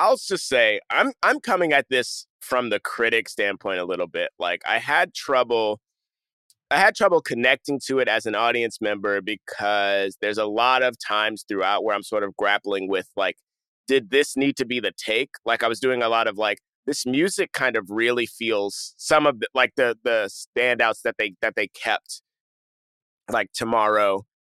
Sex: male